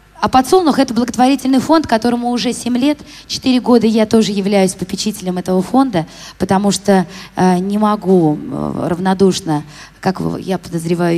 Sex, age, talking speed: female, 20-39, 150 wpm